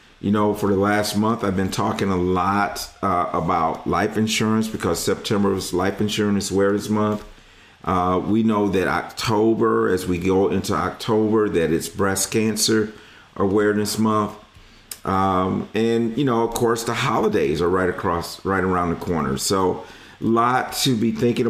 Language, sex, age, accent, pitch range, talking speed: English, male, 50-69, American, 95-110 Hz, 165 wpm